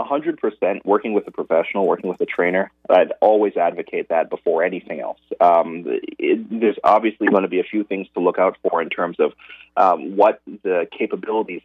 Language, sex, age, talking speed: English, male, 30-49, 190 wpm